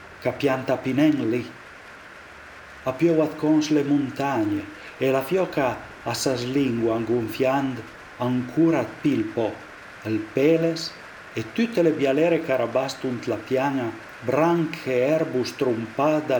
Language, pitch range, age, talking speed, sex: Italian, 115-150 Hz, 40-59, 100 wpm, male